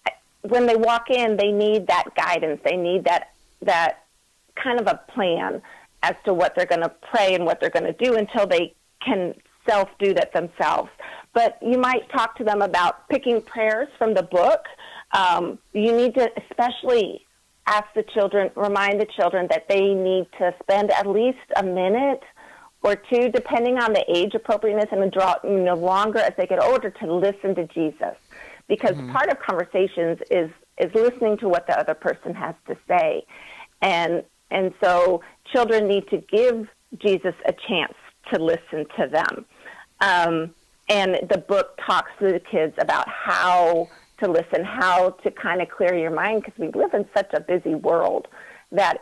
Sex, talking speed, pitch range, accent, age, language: female, 175 wpm, 175-225 Hz, American, 40-59, English